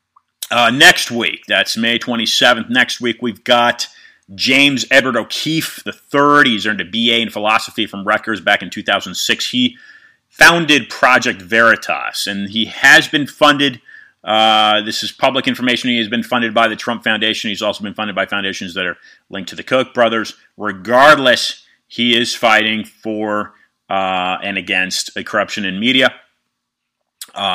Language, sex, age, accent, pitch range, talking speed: English, male, 30-49, American, 105-130 Hz, 155 wpm